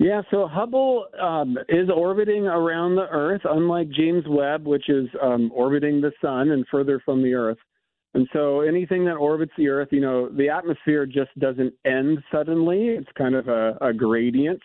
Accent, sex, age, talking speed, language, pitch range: American, male, 40-59, 180 wpm, English, 125-150 Hz